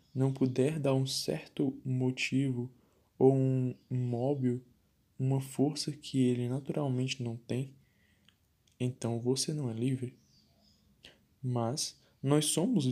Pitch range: 125-135 Hz